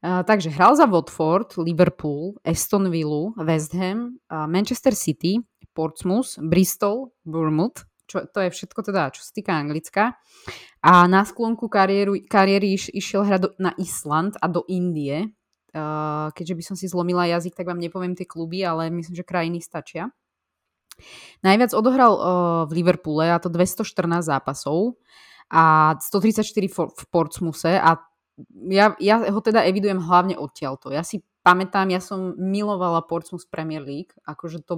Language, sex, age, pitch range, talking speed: Slovak, female, 20-39, 165-200 Hz, 145 wpm